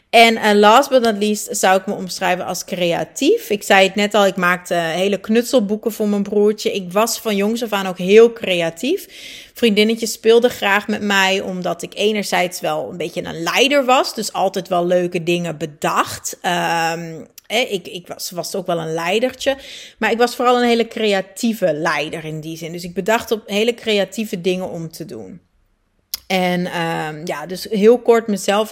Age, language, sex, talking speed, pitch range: 30-49, Dutch, female, 185 wpm, 190-250 Hz